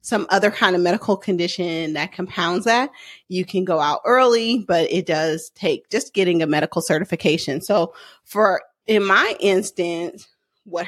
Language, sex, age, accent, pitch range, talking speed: English, female, 30-49, American, 170-225 Hz, 160 wpm